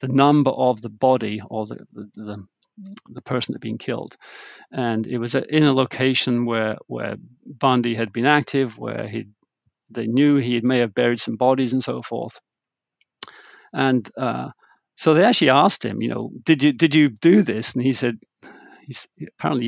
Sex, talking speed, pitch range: male, 185 wpm, 120-145 Hz